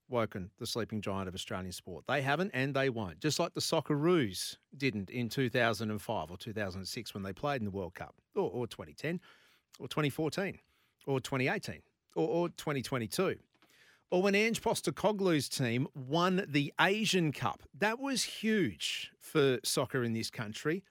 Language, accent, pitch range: English, Australian, 120-165 Hz